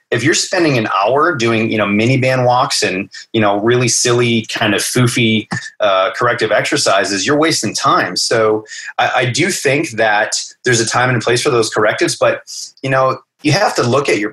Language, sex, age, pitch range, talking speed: English, male, 30-49, 110-140 Hz, 215 wpm